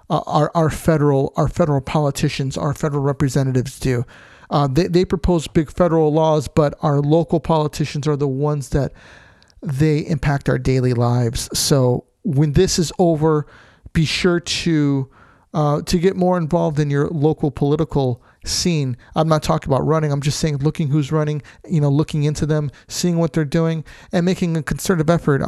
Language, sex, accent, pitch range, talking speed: English, male, American, 140-160 Hz, 175 wpm